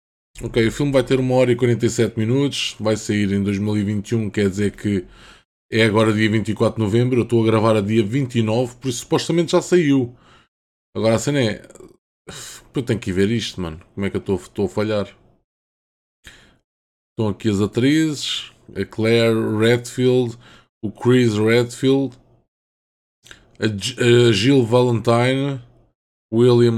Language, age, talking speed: Portuguese, 20-39, 155 wpm